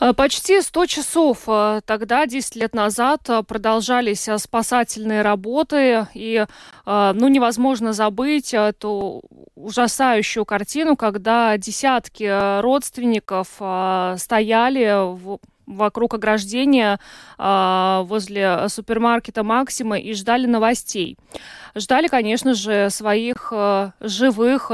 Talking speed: 85 wpm